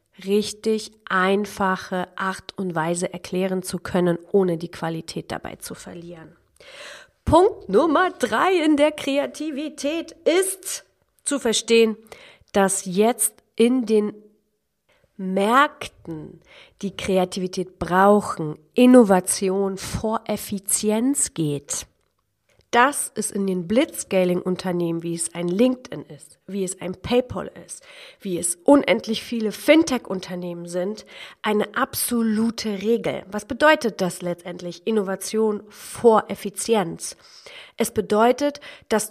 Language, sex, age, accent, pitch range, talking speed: German, female, 40-59, German, 185-240 Hz, 105 wpm